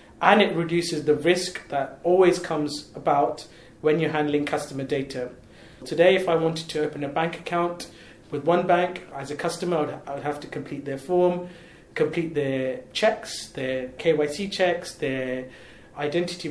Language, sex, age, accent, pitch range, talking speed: English, male, 30-49, British, 140-170 Hz, 160 wpm